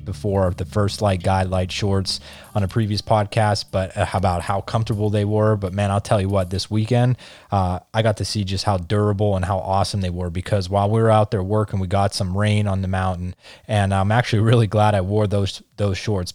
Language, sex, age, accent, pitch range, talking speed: English, male, 20-39, American, 95-110 Hz, 230 wpm